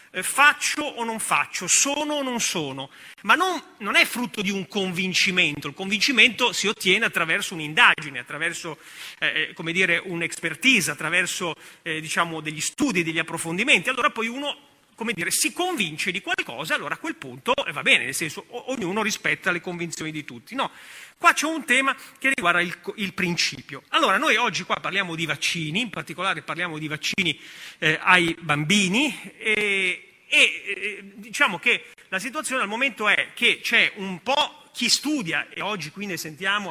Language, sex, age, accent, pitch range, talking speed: Italian, male, 30-49, native, 165-235 Hz, 170 wpm